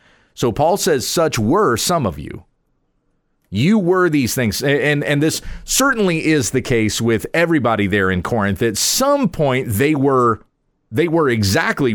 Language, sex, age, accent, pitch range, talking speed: English, male, 40-59, American, 110-155 Hz, 160 wpm